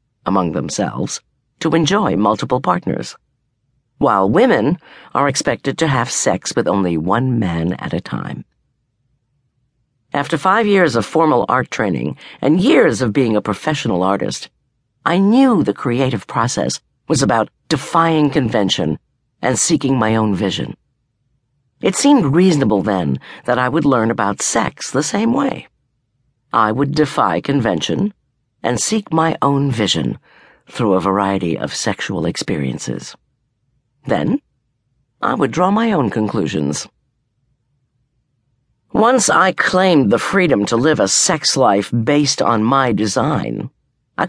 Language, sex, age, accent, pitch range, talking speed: English, female, 50-69, American, 110-150 Hz, 135 wpm